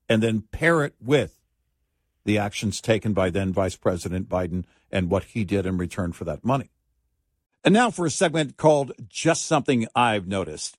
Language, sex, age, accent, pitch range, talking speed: English, male, 60-79, American, 105-155 Hz, 170 wpm